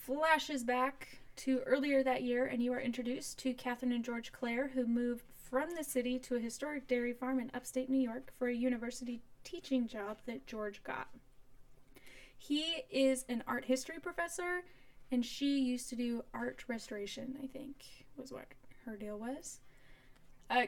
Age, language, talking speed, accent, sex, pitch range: 10-29, English, 170 wpm, American, female, 220-260 Hz